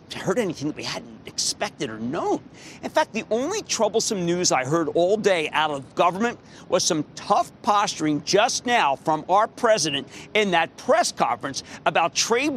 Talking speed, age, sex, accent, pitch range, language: 170 wpm, 50-69, male, American, 160-245 Hz, English